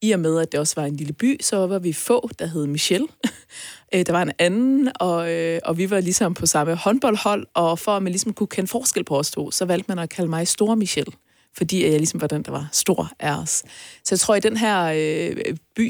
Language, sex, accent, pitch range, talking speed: Danish, female, native, 155-200 Hz, 245 wpm